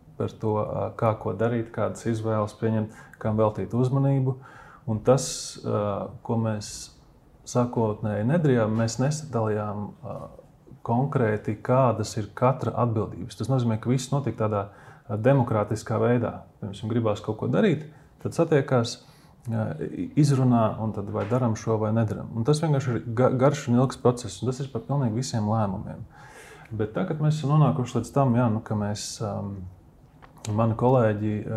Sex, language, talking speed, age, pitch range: male, English, 145 wpm, 20-39, 110-130 Hz